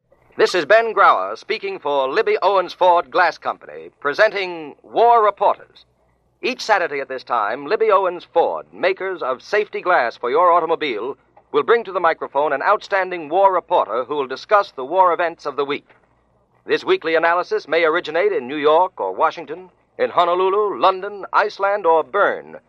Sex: male